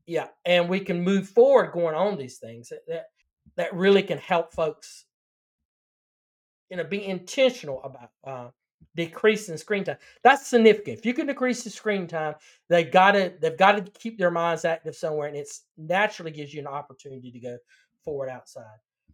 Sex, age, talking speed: male, 40-59, 170 wpm